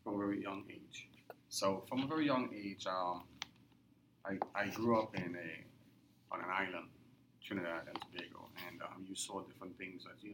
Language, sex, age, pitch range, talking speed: English, male, 30-49, 95-105 Hz, 190 wpm